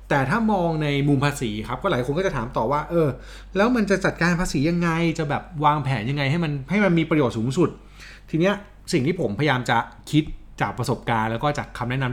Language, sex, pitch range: Thai, male, 110-155 Hz